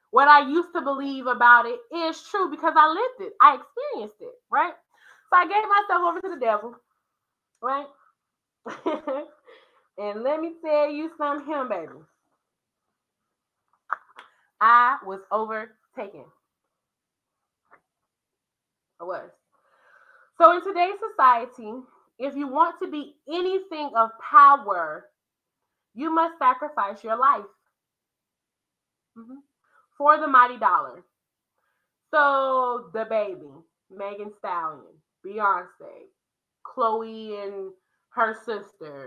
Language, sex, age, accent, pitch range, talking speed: English, female, 20-39, American, 215-315 Hz, 110 wpm